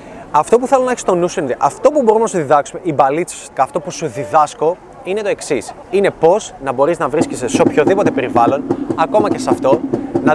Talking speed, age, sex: 215 wpm, 20-39, male